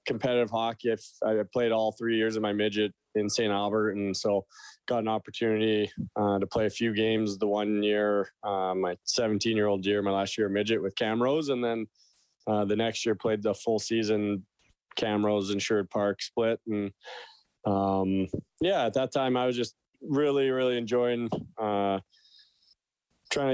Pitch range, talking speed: 105-120 Hz, 170 wpm